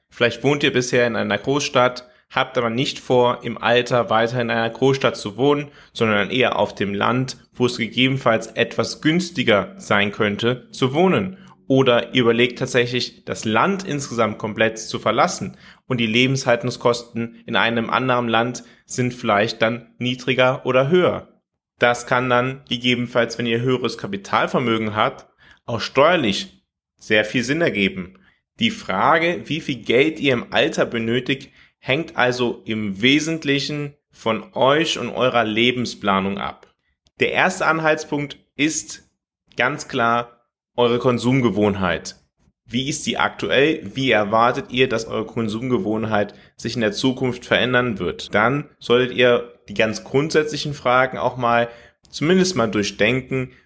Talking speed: 140 wpm